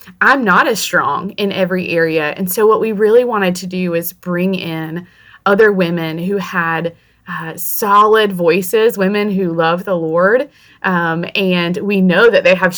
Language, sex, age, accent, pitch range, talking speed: English, female, 20-39, American, 170-195 Hz, 175 wpm